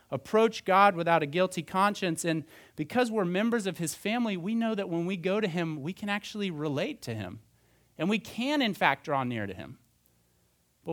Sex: male